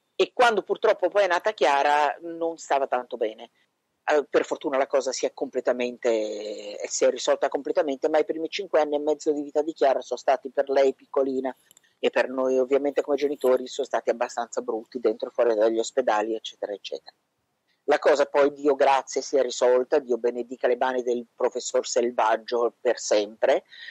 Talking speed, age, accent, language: 180 wpm, 50-69, native, Italian